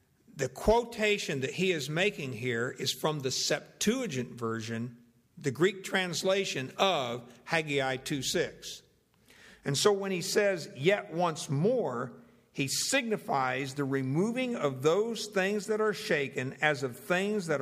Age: 60-79